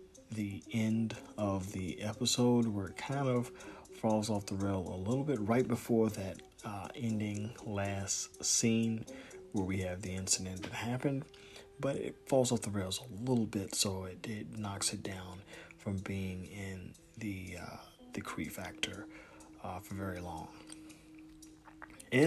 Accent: American